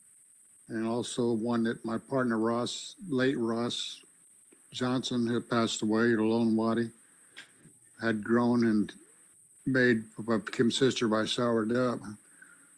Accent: American